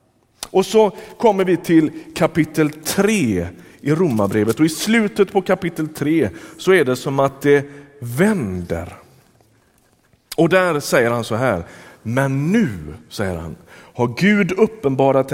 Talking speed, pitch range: 135 wpm, 115-185 Hz